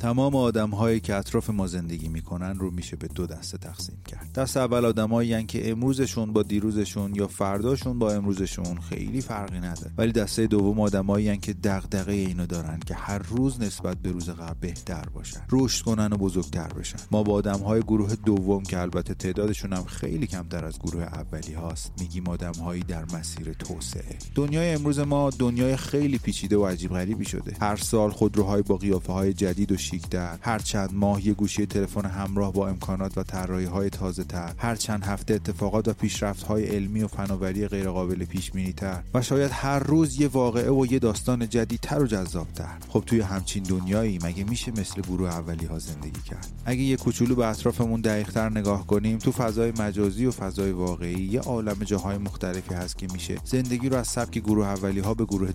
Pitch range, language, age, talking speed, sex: 90-110 Hz, Persian, 30-49, 185 wpm, male